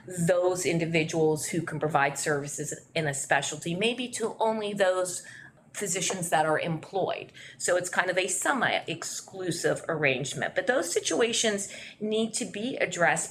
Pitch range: 165-225 Hz